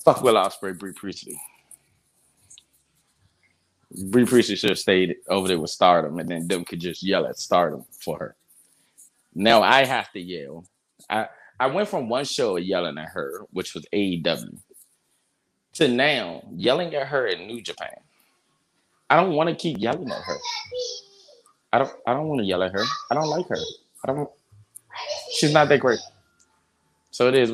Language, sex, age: English, male, 20-39